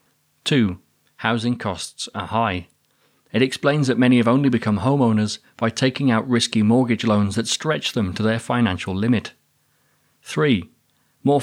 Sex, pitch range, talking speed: male, 105-125 Hz, 145 wpm